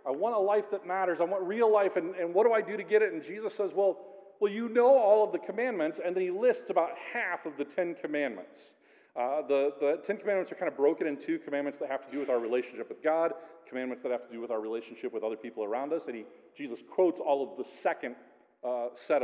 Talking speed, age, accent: 260 wpm, 40-59, American